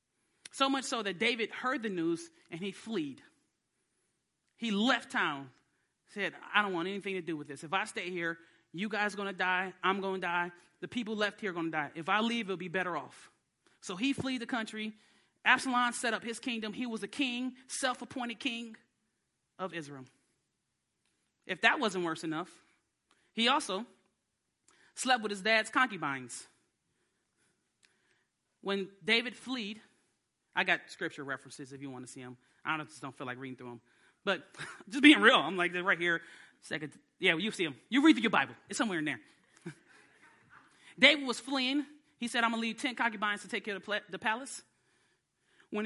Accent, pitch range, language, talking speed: American, 185-240 Hz, English, 190 wpm